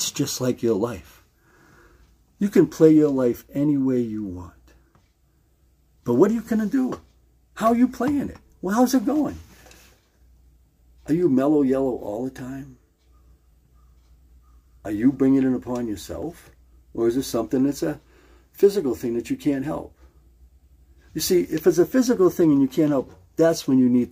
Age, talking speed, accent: 60-79, 175 wpm, American